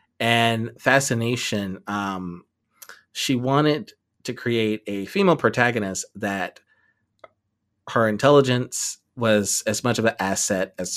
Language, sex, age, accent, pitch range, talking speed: English, male, 30-49, American, 95-110 Hz, 110 wpm